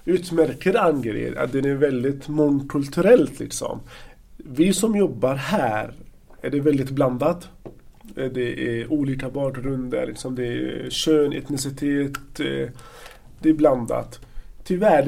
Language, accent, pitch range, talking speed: Swedish, native, 125-155 Hz, 115 wpm